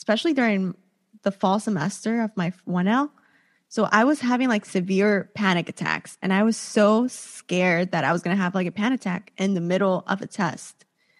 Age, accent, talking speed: 20-39, American, 200 wpm